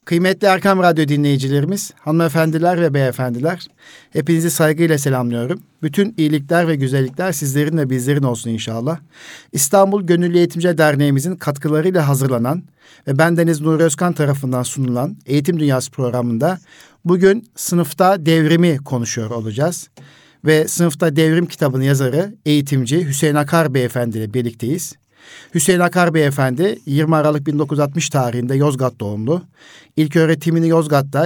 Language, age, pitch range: Turkish, 50-69, 135-165 Hz